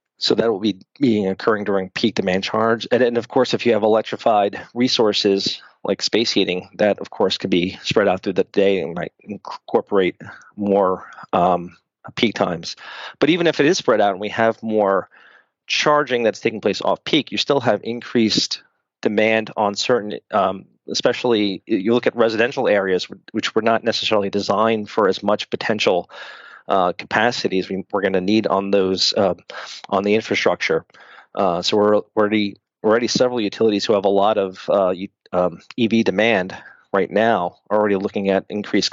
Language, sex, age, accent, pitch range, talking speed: English, male, 40-59, American, 95-110 Hz, 175 wpm